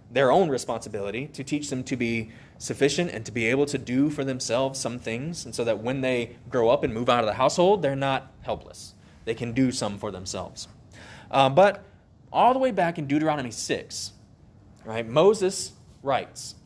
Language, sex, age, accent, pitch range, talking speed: English, male, 20-39, American, 115-165 Hz, 190 wpm